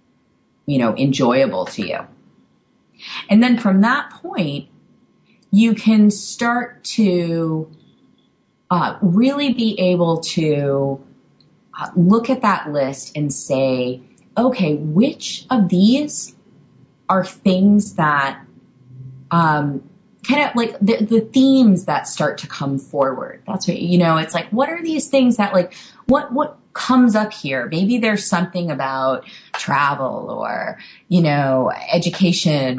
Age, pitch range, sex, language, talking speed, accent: 30-49, 150-225 Hz, female, English, 130 wpm, American